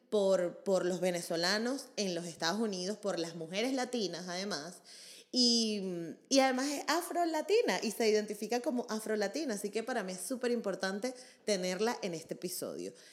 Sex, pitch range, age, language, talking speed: female, 180-235 Hz, 20-39, Spanish, 155 wpm